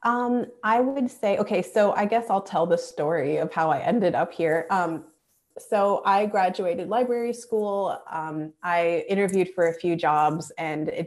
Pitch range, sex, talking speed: 165-210 Hz, female, 180 wpm